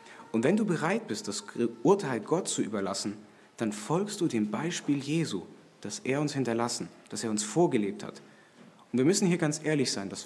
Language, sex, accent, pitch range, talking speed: German, male, German, 110-150 Hz, 195 wpm